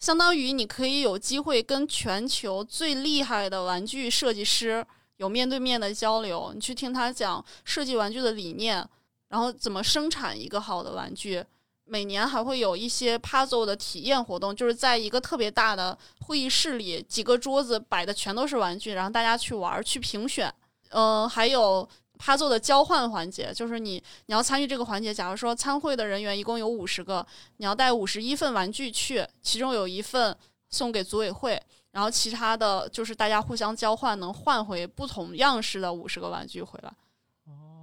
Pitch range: 195-255 Hz